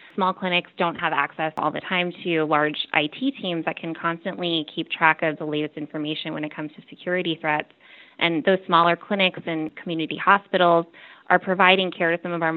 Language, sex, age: English, female, 20-39